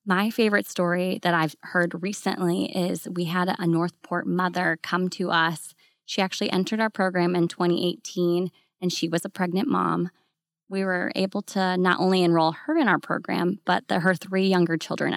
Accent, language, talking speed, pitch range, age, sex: American, English, 180 wpm, 170-190 Hz, 20-39, female